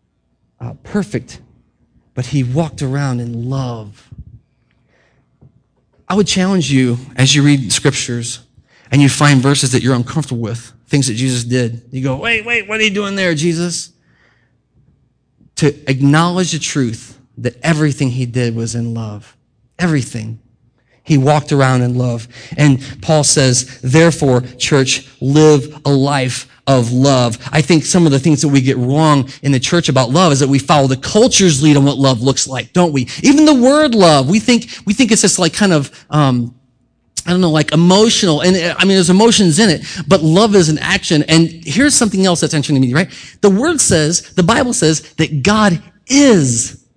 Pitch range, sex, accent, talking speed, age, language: 130-175 Hz, male, American, 185 wpm, 30-49, English